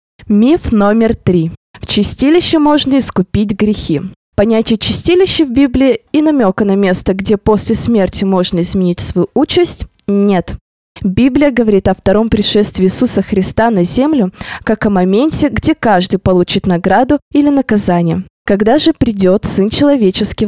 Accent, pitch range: native, 185-255 Hz